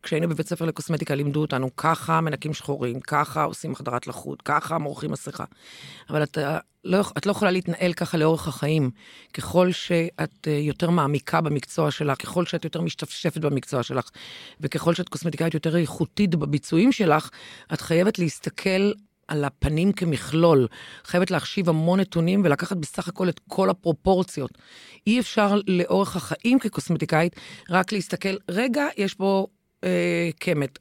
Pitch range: 155-200 Hz